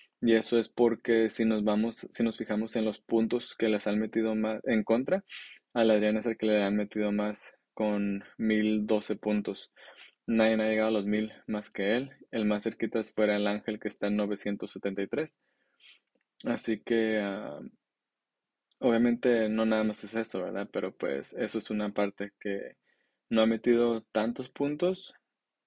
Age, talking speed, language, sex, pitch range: 20-39, 170 wpm, Spanish, male, 105-115 Hz